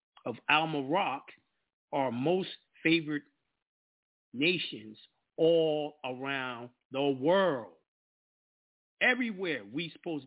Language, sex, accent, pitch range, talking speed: English, male, American, 140-230 Hz, 75 wpm